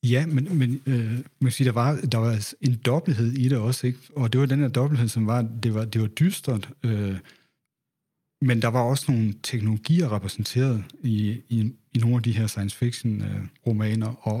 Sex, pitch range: male, 110-130 Hz